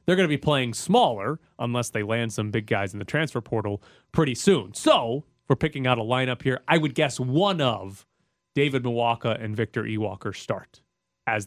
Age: 30-49